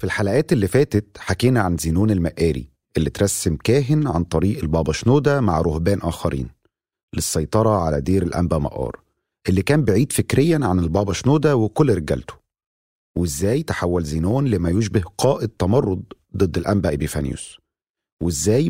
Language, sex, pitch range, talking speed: Arabic, male, 85-120 Hz, 140 wpm